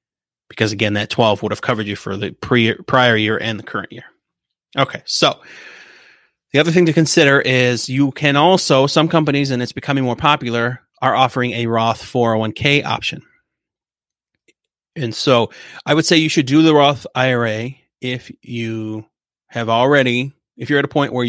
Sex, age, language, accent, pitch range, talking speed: male, 30-49, English, American, 110-140 Hz, 175 wpm